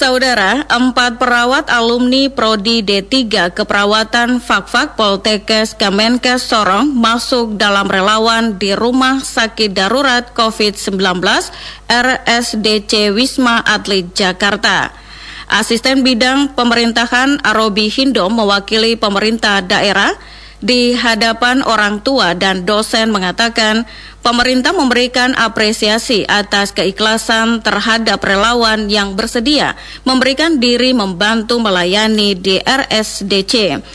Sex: female